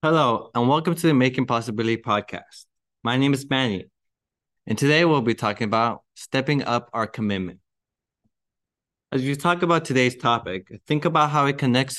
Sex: male